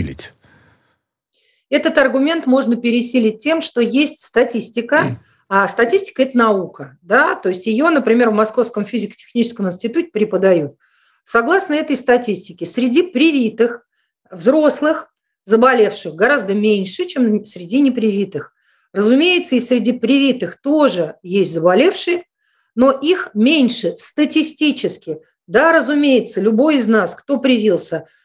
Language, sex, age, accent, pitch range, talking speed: Russian, female, 40-59, native, 215-285 Hz, 110 wpm